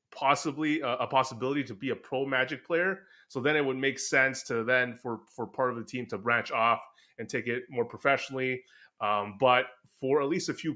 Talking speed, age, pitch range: 220 wpm, 20-39, 115-135 Hz